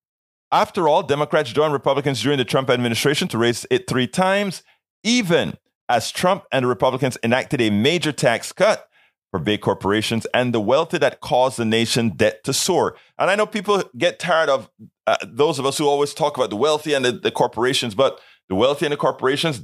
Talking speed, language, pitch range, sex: 200 wpm, English, 115-160 Hz, male